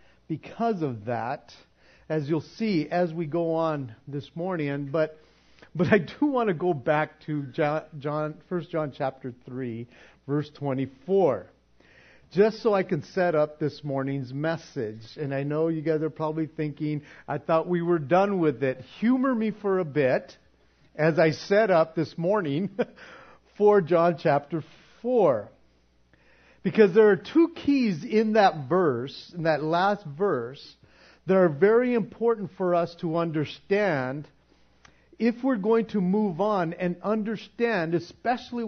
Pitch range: 150-205 Hz